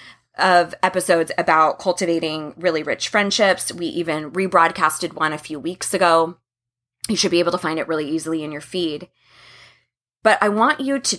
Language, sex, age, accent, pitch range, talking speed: English, female, 20-39, American, 155-190 Hz, 170 wpm